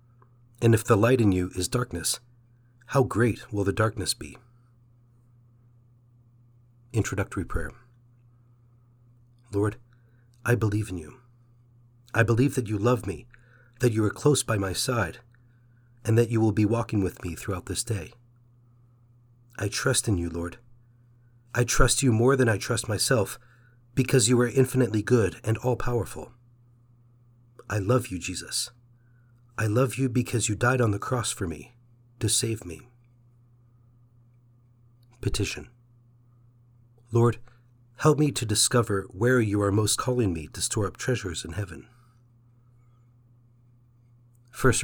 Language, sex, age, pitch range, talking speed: English, male, 40-59, 115-120 Hz, 135 wpm